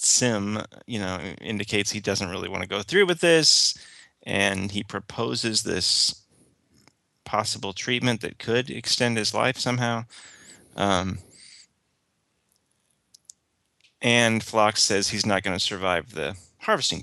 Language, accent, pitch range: English, American, 100-115 Hz